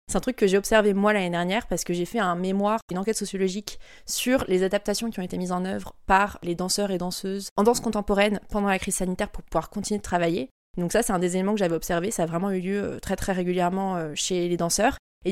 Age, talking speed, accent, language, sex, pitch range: 20-39, 255 wpm, French, French, female, 185-220 Hz